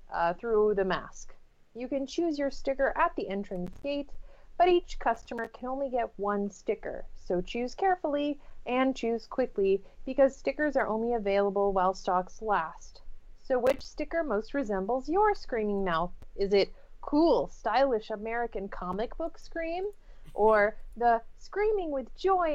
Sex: female